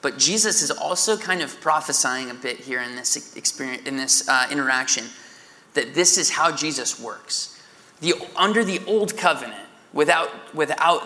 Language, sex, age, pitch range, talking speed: English, male, 20-39, 140-180 Hz, 165 wpm